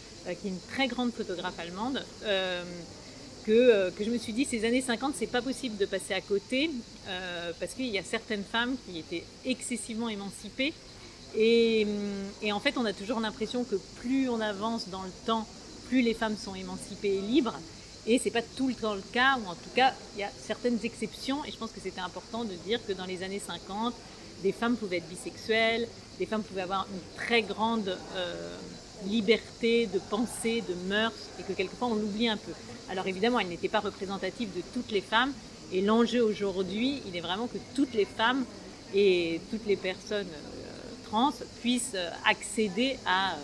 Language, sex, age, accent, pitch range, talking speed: French, female, 40-59, French, 190-235 Hz, 195 wpm